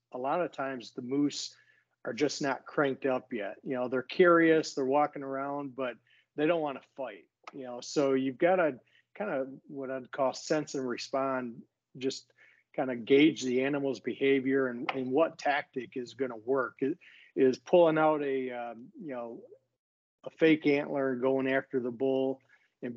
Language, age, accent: English, 40-59, American